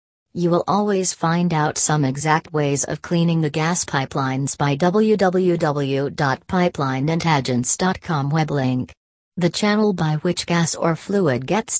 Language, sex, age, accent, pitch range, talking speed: English, female, 40-59, American, 140-180 Hz, 125 wpm